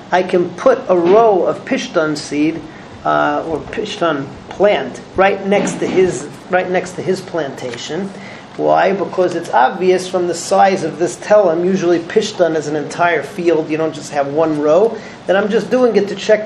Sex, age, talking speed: male, 40-59, 180 wpm